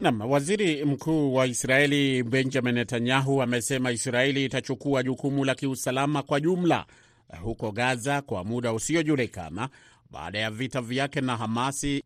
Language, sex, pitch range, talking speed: Swahili, male, 120-145 Hz, 130 wpm